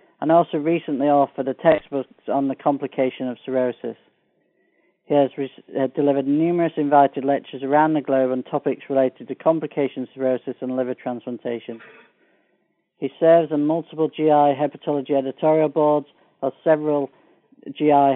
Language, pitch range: English, 130-150 Hz